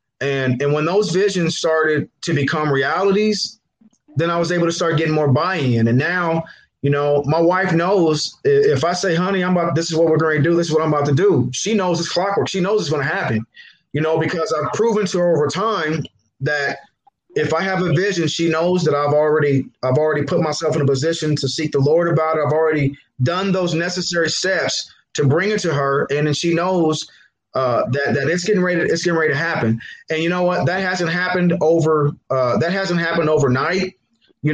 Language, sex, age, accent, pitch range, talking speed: English, male, 20-39, American, 145-175 Hz, 225 wpm